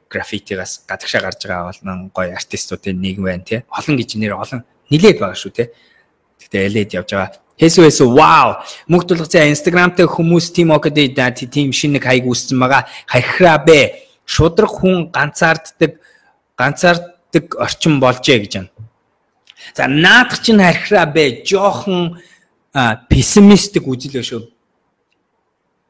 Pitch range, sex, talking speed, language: 105-170 Hz, male, 100 wpm, English